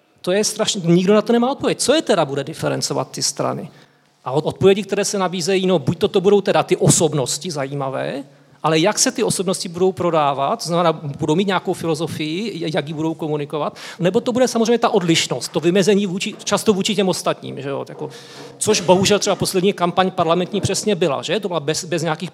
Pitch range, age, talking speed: 150-185 Hz, 40-59, 205 wpm